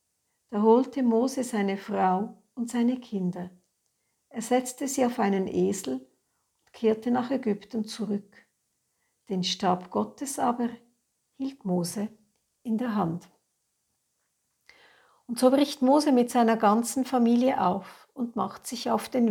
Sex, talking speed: female, 130 wpm